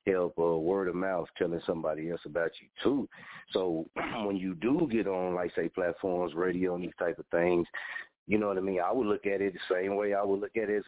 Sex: male